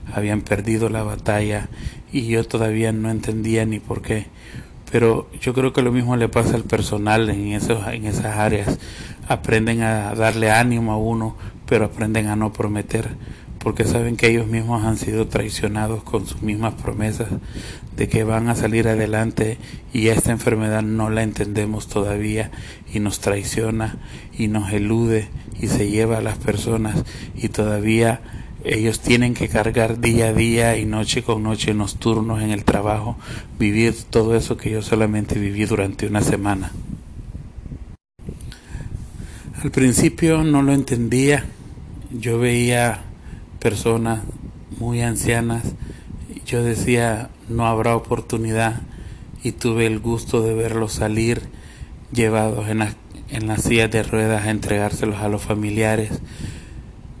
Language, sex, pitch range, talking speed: Spanish, male, 105-115 Hz, 145 wpm